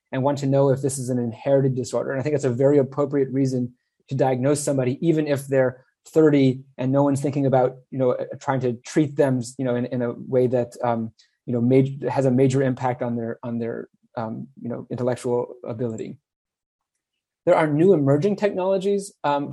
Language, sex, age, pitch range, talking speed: English, male, 30-49, 130-155 Hz, 205 wpm